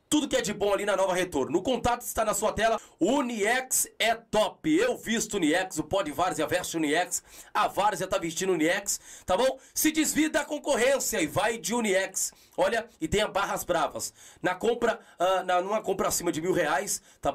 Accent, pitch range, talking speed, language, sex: Brazilian, 150-200 Hz, 210 wpm, Portuguese, male